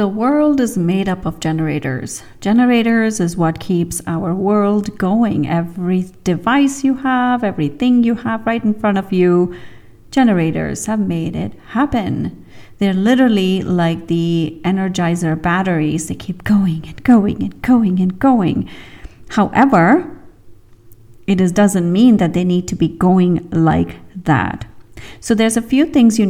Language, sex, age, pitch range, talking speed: English, female, 40-59, 170-220 Hz, 145 wpm